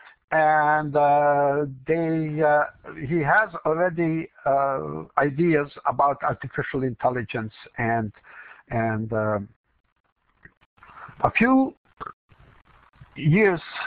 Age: 60-79